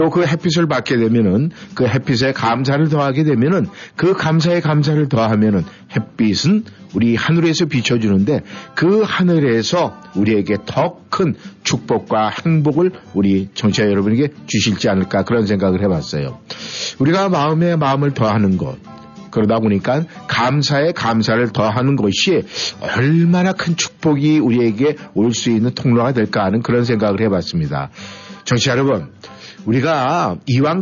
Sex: male